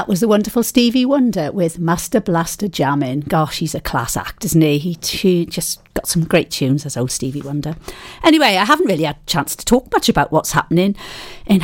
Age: 50-69